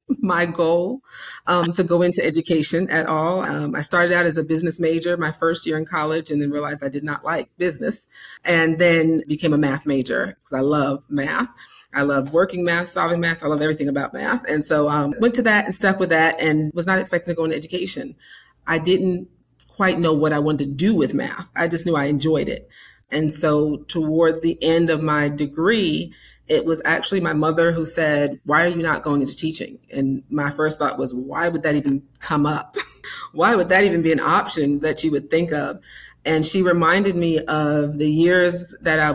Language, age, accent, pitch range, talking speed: English, 40-59, American, 150-170 Hz, 215 wpm